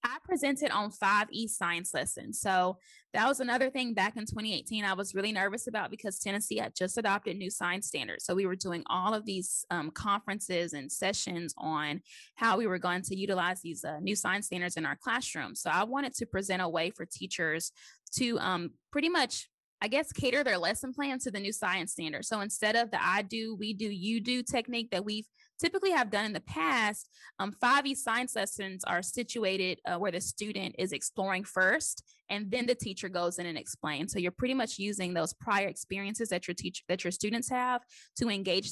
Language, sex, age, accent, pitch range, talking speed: English, female, 10-29, American, 180-230 Hz, 210 wpm